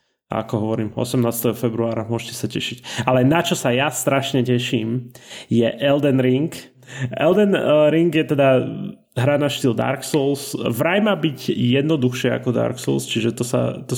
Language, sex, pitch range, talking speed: Slovak, male, 120-140 Hz, 150 wpm